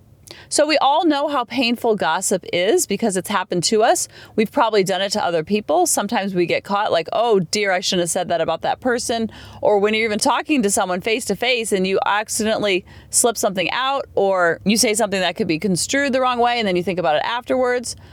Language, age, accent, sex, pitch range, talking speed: English, 30-49, American, female, 185-265 Hz, 230 wpm